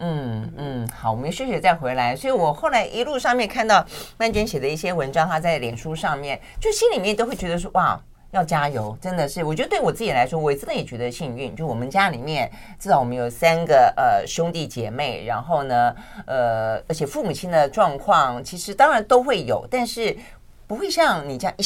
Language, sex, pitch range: Chinese, female, 135-210 Hz